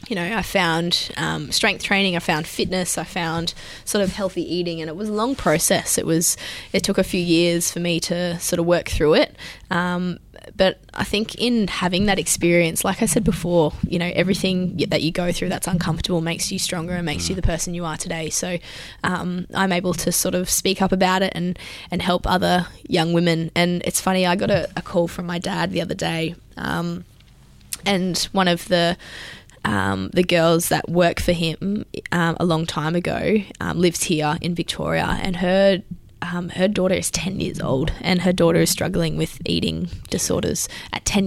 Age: 10-29